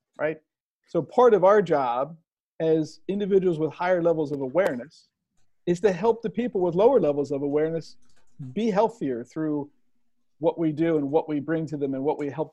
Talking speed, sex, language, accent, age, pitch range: 185 wpm, male, English, American, 50-69, 150-185 Hz